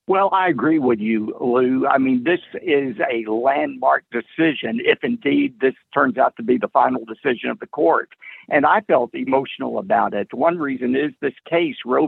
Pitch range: 125-195 Hz